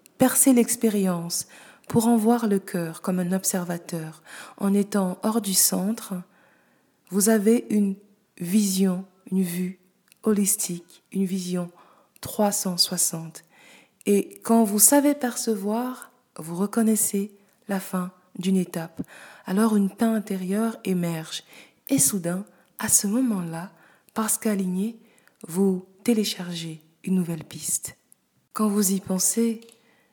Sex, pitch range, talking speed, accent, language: female, 185-225 Hz, 115 wpm, French, French